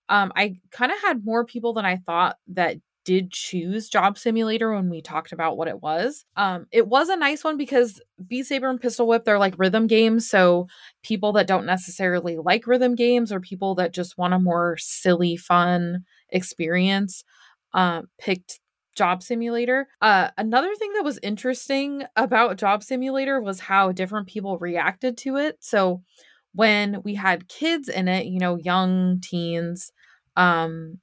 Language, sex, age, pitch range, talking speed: English, female, 20-39, 180-245 Hz, 170 wpm